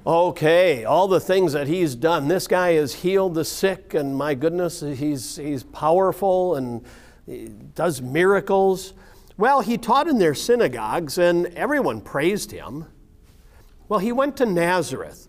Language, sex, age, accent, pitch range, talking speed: English, male, 50-69, American, 140-200 Hz, 145 wpm